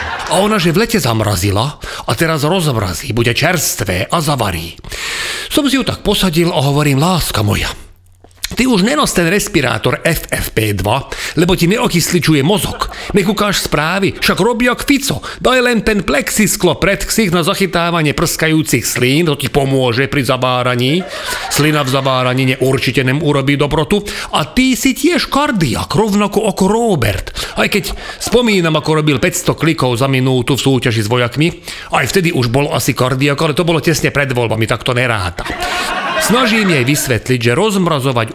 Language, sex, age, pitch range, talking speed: Slovak, male, 40-59, 125-180 Hz, 155 wpm